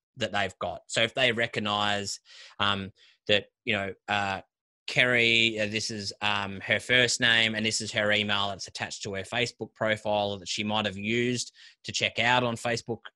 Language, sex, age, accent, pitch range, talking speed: English, male, 20-39, Australian, 100-120 Hz, 185 wpm